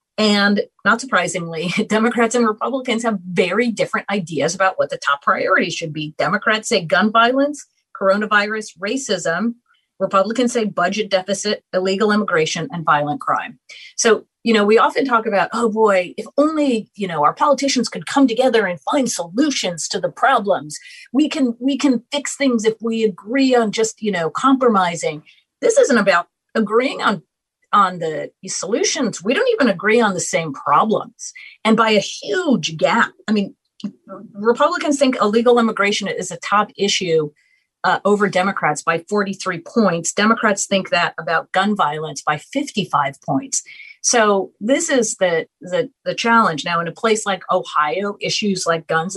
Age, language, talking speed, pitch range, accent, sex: 40-59, English, 160 wpm, 180-240 Hz, American, female